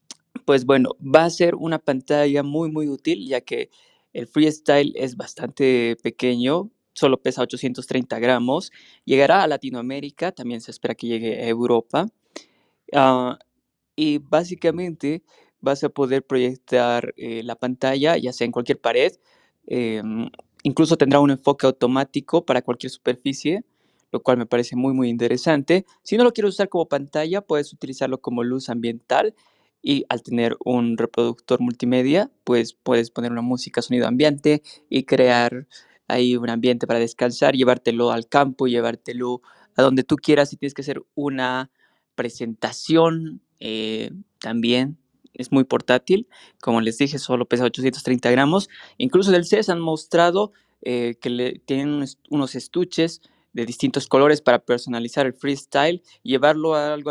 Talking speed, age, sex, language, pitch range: 145 wpm, 20-39, male, Spanish, 120-150 Hz